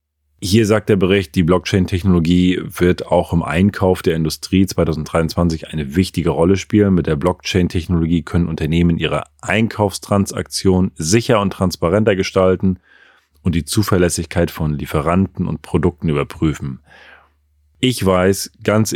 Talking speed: 125 wpm